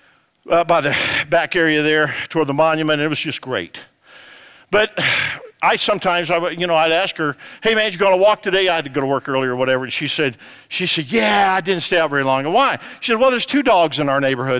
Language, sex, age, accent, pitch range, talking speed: English, male, 50-69, American, 170-225 Hz, 255 wpm